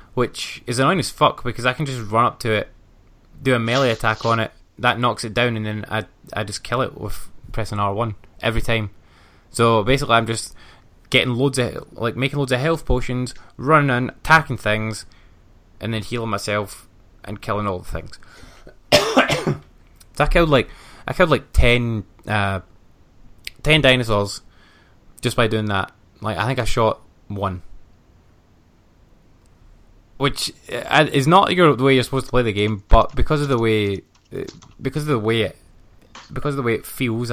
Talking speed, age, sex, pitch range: 175 wpm, 20-39, male, 100-120 Hz